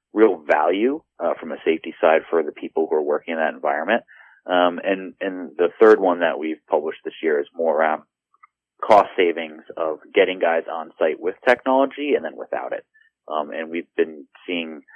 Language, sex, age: English, male, 30-49